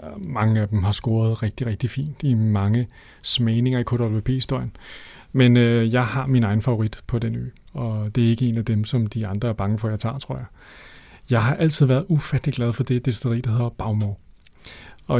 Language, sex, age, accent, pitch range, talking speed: Danish, male, 30-49, native, 110-130 Hz, 215 wpm